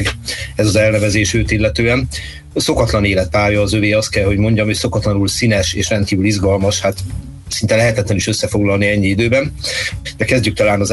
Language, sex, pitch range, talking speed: Hungarian, male, 100-115 Hz, 170 wpm